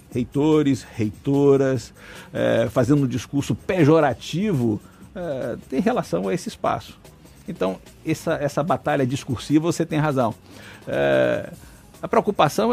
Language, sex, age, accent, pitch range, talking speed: Portuguese, male, 60-79, Brazilian, 130-165 Hz, 115 wpm